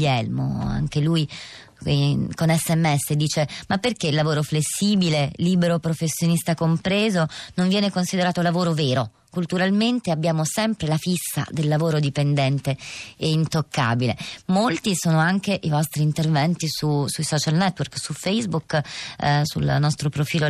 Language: Italian